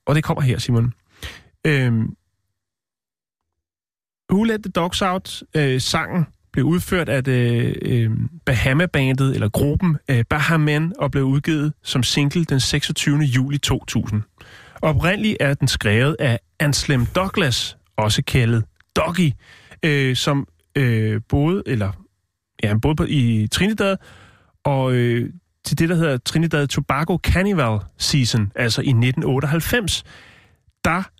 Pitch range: 115-150 Hz